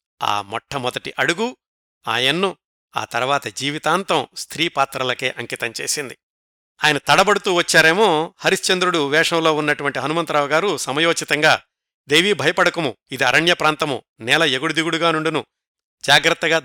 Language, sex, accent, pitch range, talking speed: Telugu, male, native, 145-180 Hz, 95 wpm